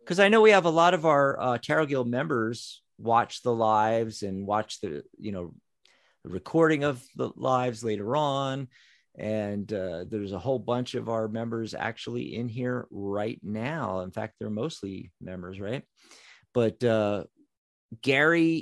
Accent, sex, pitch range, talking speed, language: American, male, 105-135 Hz, 165 wpm, English